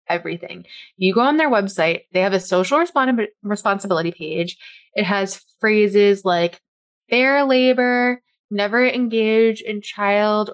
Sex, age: female, 20-39